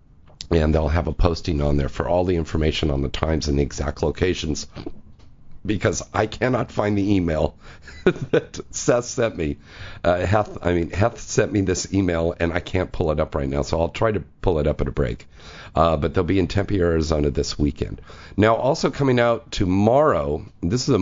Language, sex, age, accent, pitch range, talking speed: English, male, 50-69, American, 75-95 Hz, 205 wpm